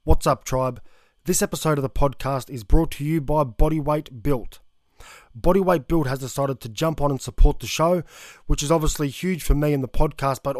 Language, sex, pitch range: English, male, 135-160 Hz